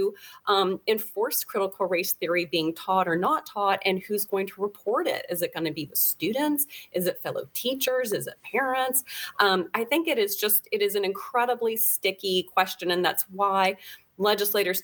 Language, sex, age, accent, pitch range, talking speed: English, female, 30-49, American, 175-205 Hz, 185 wpm